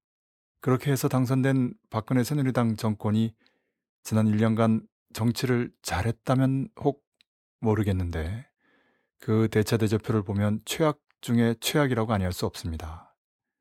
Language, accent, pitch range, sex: Korean, native, 110-130 Hz, male